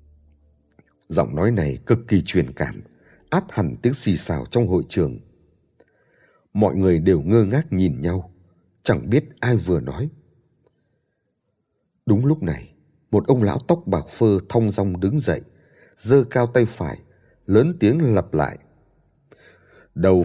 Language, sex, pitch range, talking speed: Vietnamese, male, 90-110 Hz, 145 wpm